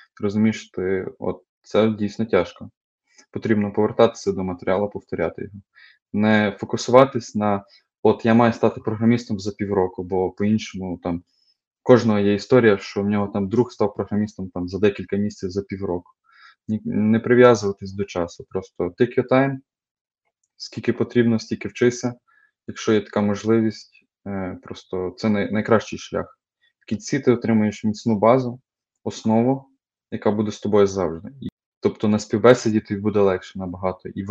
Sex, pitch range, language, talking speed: male, 95-115 Hz, Ukrainian, 140 wpm